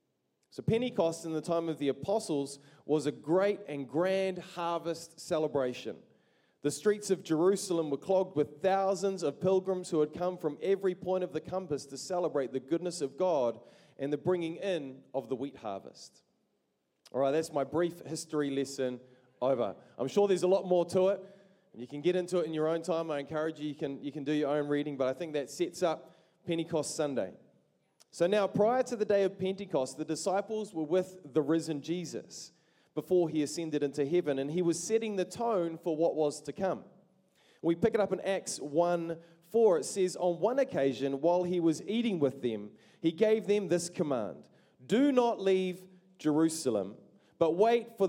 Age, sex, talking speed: 30-49, male, 190 wpm